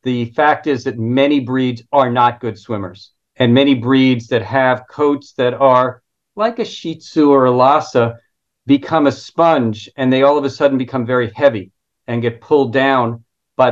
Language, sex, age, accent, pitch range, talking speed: English, male, 40-59, American, 125-150 Hz, 185 wpm